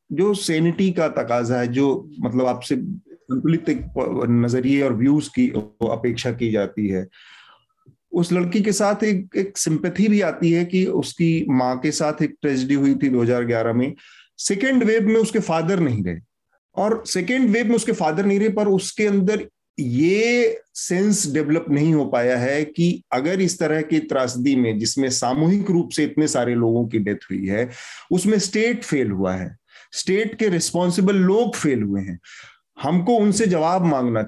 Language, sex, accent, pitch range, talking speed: Hindi, male, native, 125-195 Hz, 165 wpm